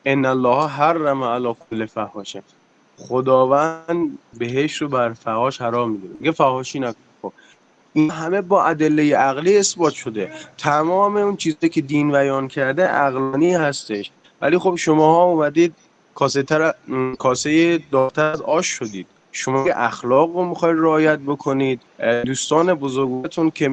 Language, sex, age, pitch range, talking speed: Persian, male, 20-39, 130-160 Hz, 135 wpm